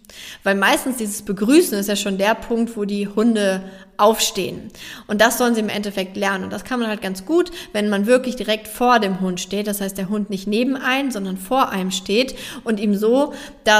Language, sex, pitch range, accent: German, female, 195-250 Hz, German